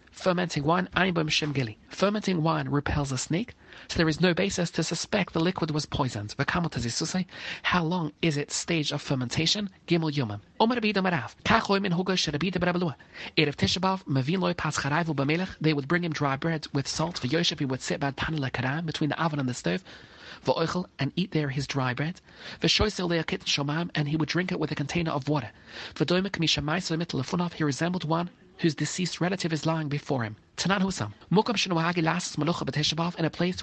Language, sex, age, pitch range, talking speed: English, male, 30-49, 145-180 Hz, 190 wpm